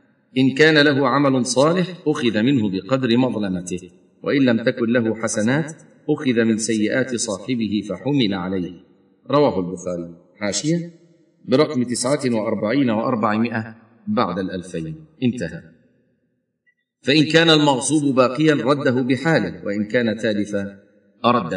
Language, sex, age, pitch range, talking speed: Arabic, male, 40-59, 105-140 Hz, 110 wpm